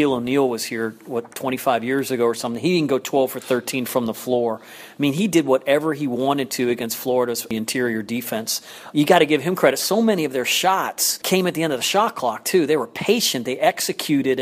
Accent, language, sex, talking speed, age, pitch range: American, English, male, 230 wpm, 40-59, 125-145 Hz